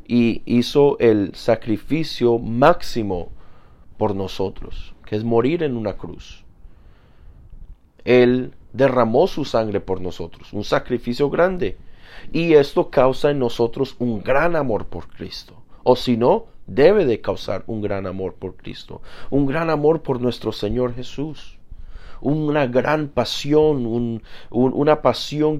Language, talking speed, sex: English, 130 wpm, male